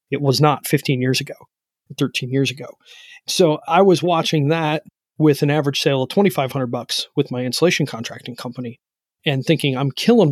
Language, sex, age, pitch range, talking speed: English, male, 30-49, 135-165 Hz, 175 wpm